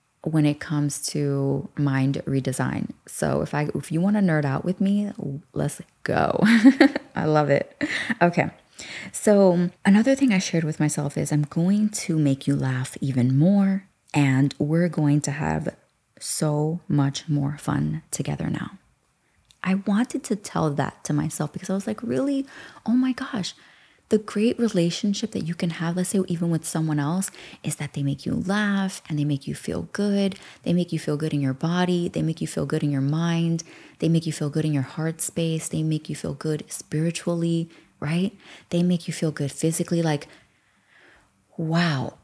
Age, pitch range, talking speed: 20-39, 150-195 Hz, 185 wpm